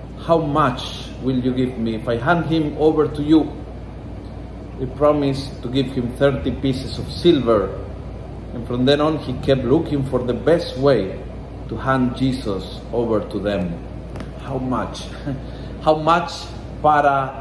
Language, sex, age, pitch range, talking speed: Filipino, male, 40-59, 110-140 Hz, 150 wpm